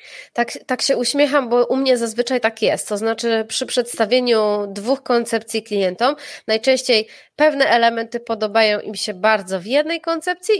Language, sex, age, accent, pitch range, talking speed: Polish, female, 20-39, native, 220-275 Hz, 155 wpm